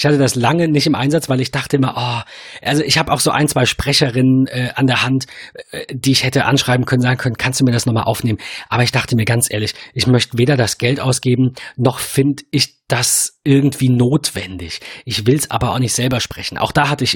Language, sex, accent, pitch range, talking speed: German, male, German, 120-140 Hz, 240 wpm